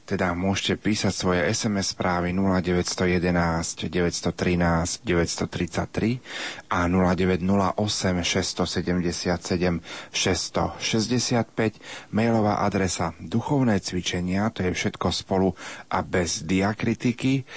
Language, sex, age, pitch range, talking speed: Slovak, male, 40-59, 90-110 Hz, 80 wpm